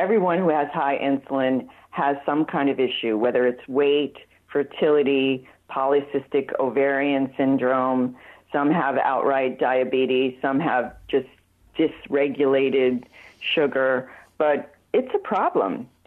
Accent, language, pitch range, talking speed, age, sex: American, English, 135-205 Hz, 110 wpm, 50-69, female